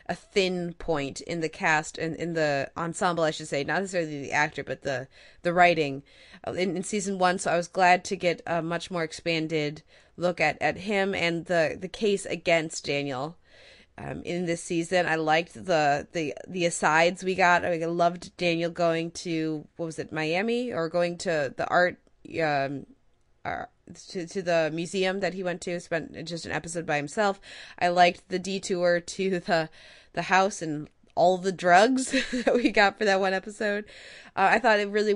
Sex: female